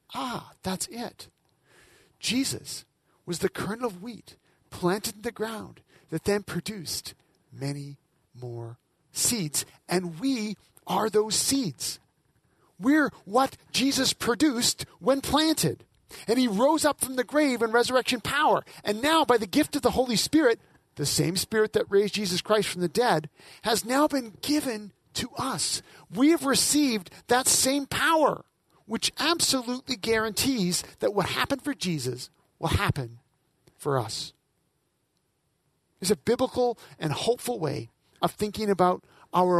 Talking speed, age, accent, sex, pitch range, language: 140 wpm, 40-59, American, male, 150-245 Hz, English